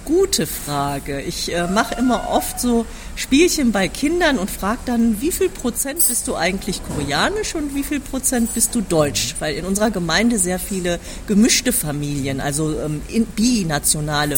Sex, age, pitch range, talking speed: female, 40-59, 155-235 Hz, 165 wpm